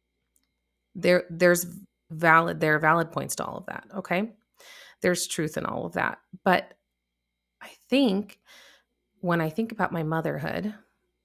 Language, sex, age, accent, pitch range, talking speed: English, female, 30-49, American, 150-190 Hz, 145 wpm